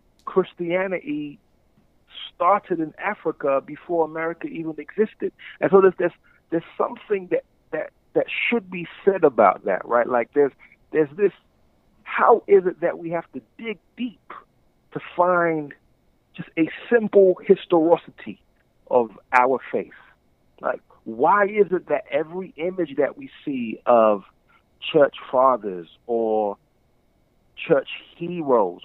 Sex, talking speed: male, 125 wpm